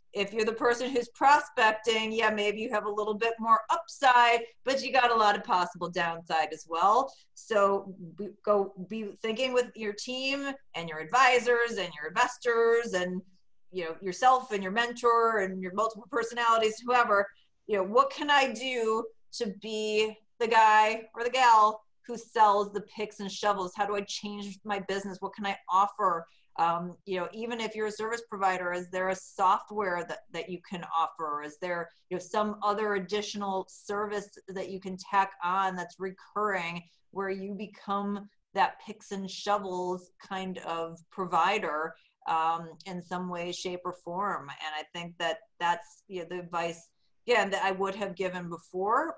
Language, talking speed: English, 180 wpm